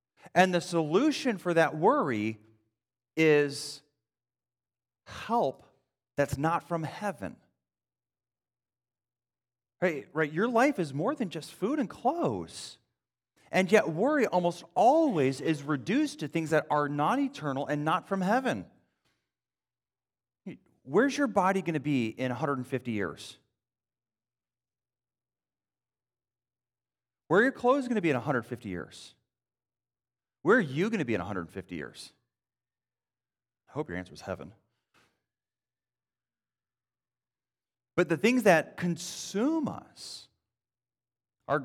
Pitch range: 120-185 Hz